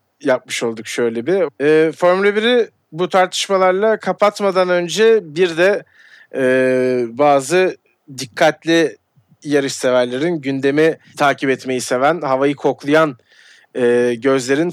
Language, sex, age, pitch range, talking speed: Turkish, male, 40-59, 125-170 Hz, 90 wpm